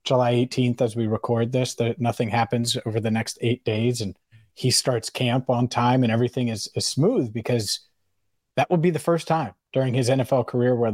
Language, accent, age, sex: English, American, 30-49, male